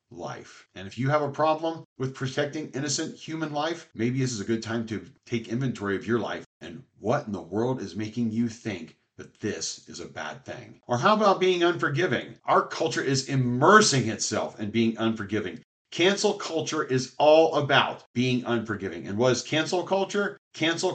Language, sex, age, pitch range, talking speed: English, male, 40-59, 110-145 Hz, 185 wpm